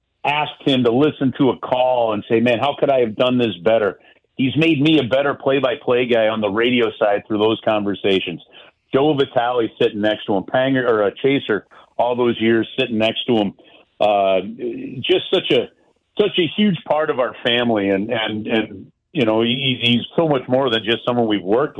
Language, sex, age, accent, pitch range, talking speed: English, male, 50-69, American, 110-145 Hz, 205 wpm